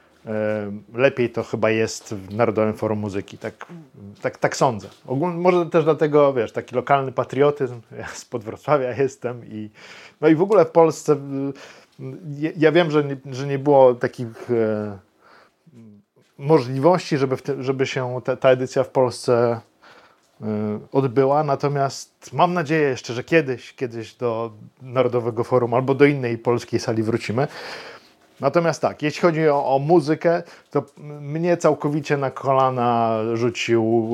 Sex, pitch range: male, 115-150 Hz